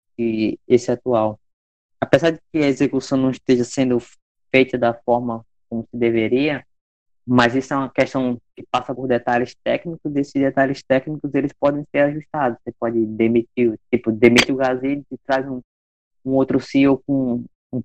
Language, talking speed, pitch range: Portuguese, 170 wpm, 115-135 Hz